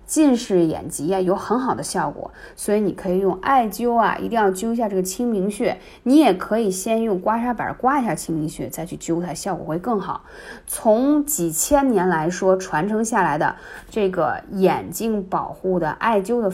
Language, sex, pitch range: Chinese, female, 170-245 Hz